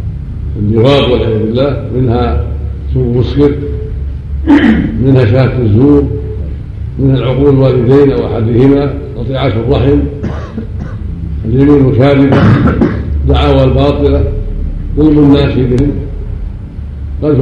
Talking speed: 80 wpm